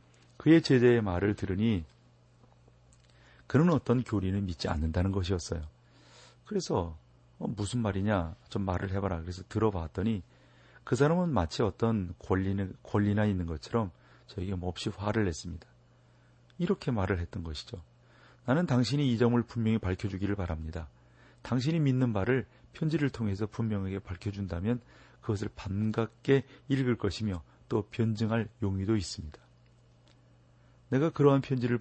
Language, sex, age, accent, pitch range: Korean, male, 40-59, native, 90-120 Hz